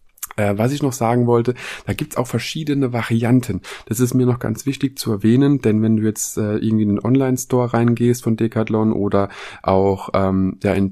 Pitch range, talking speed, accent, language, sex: 105-130 Hz, 205 wpm, German, German, male